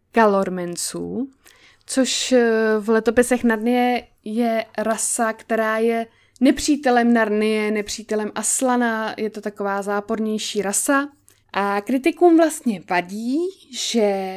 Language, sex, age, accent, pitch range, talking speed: Czech, female, 20-39, native, 205-240 Hz, 95 wpm